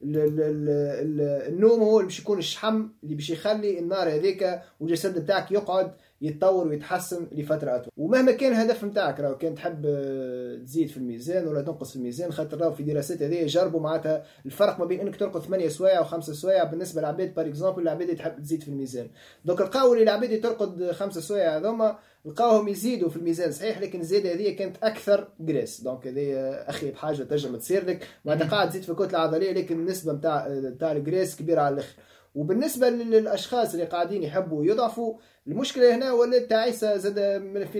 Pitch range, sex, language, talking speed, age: 155-200 Hz, male, Arabic, 180 wpm, 20-39